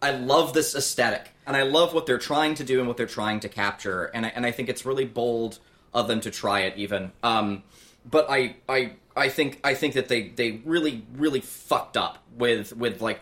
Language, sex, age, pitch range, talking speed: English, male, 20-39, 115-145 Hz, 225 wpm